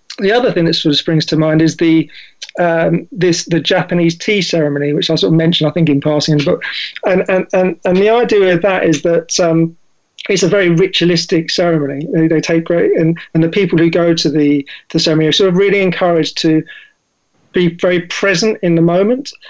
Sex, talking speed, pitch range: male, 220 wpm, 165-185 Hz